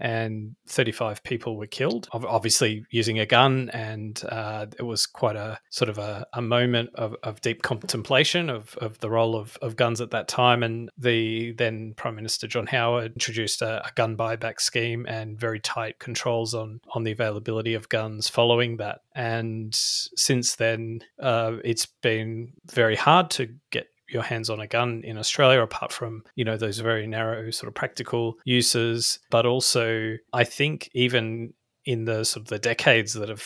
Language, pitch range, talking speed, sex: English, 110-120 Hz, 180 wpm, male